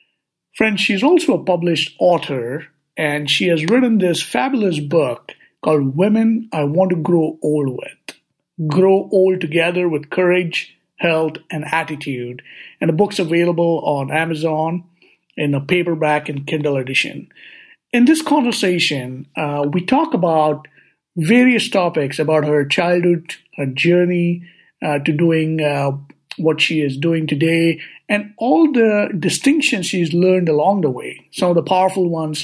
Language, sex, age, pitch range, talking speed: English, male, 50-69, 150-190 Hz, 145 wpm